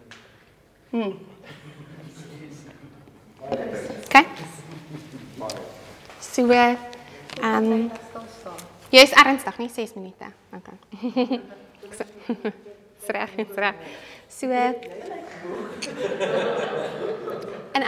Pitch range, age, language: 205-275 Hz, 30-49, English